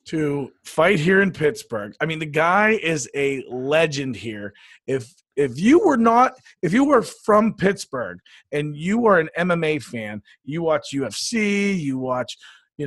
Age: 40-59